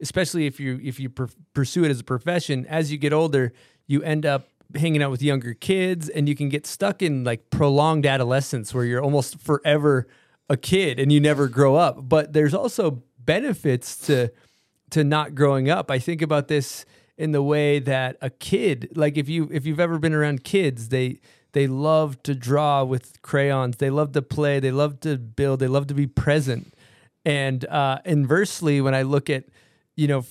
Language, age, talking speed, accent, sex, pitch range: English, 30-49, 195 wpm, American, male, 135-155 Hz